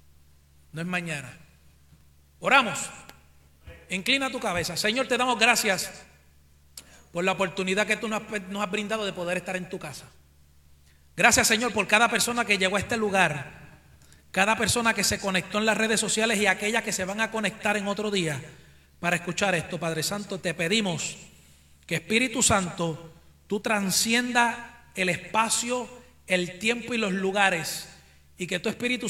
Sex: male